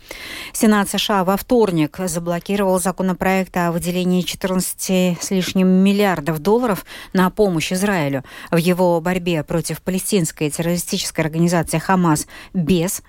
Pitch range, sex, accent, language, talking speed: 160-205 Hz, female, native, Russian, 115 wpm